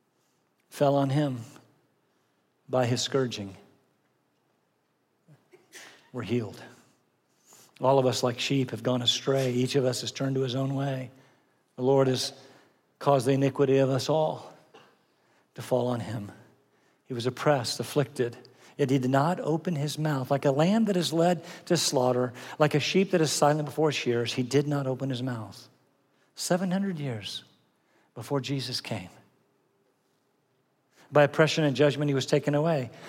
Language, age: French, 50-69